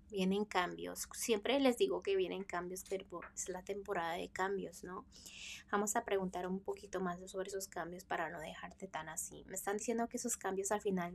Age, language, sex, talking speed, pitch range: 20-39, Spanish, female, 200 wpm, 180-205 Hz